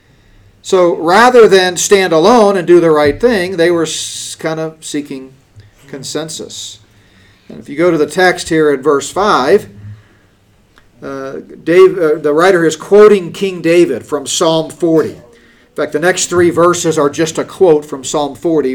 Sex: male